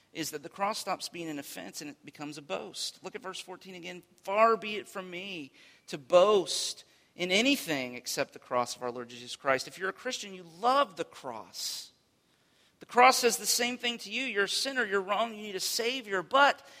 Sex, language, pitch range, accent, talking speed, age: male, English, 150-215 Hz, American, 220 wpm, 40-59